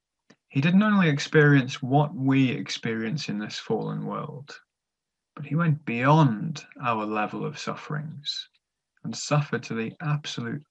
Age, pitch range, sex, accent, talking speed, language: 20-39, 125-155 Hz, male, British, 135 wpm, English